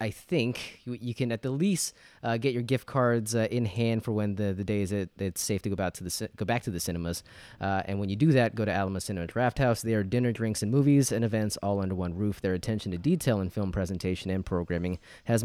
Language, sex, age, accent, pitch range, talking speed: English, male, 20-39, American, 95-120 Hz, 265 wpm